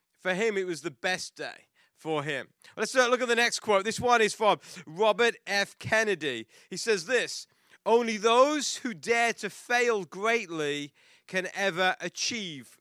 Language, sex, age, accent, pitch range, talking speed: English, male, 30-49, British, 165-225 Hz, 165 wpm